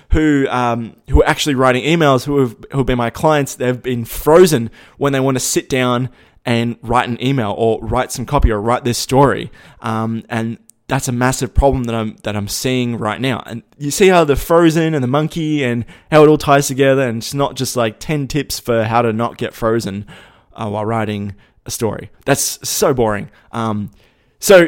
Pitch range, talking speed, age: 115-145 Hz, 210 wpm, 20-39